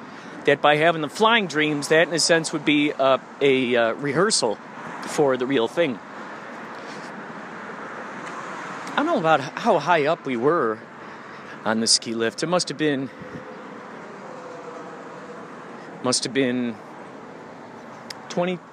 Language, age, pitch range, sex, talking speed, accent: English, 30-49, 125-190 Hz, male, 130 wpm, American